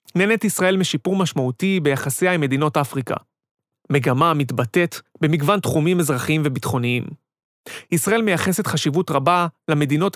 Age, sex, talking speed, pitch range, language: 30-49, male, 110 wpm, 145-180 Hz, Hebrew